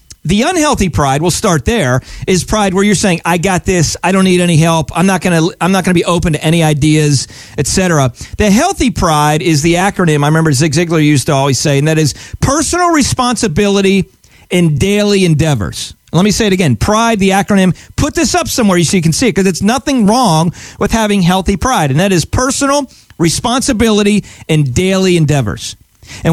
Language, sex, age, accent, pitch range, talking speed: English, male, 40-59, American, 155-215 Hz, 200 wpm